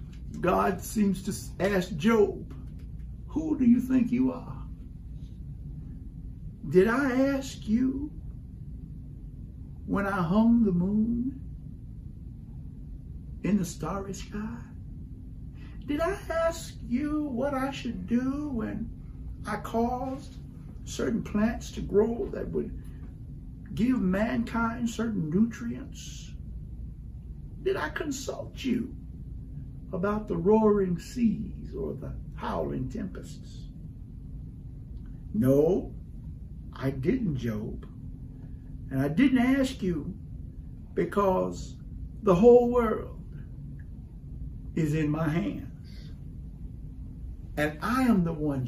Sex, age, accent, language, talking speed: male, 60-79, American, English, 95 wpm